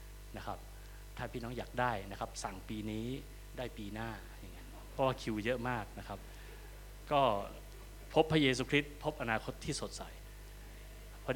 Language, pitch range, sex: Thai, 110-145 Hz, male